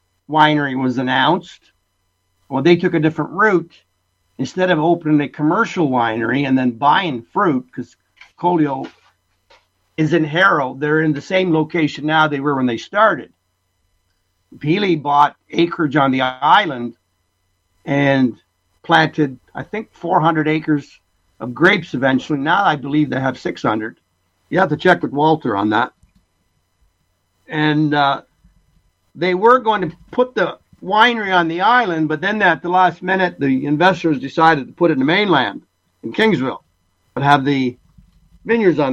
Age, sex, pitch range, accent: 50-69, male, 110-165 Hz, American